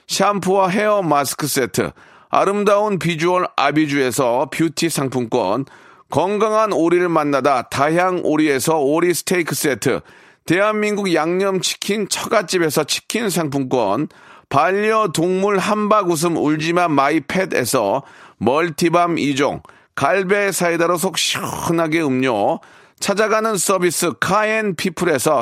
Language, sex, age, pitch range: Korean, male, 40-59, 155-200 Hz